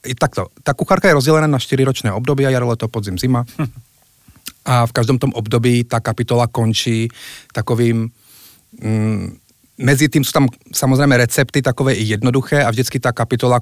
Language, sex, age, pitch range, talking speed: Slovak, male, 30-49, 110-130 Hz, 160 wpm